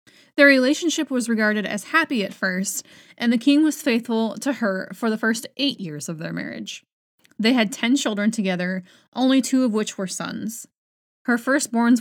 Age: 20-39